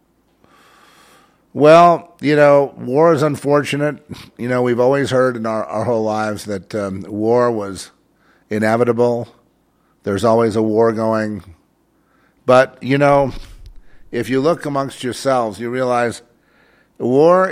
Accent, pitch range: American, 100-135 Hz